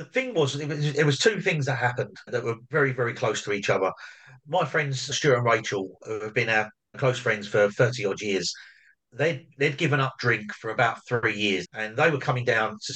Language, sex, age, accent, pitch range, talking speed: English, male, 40-59, British, 115-145 Hz, 220 wpm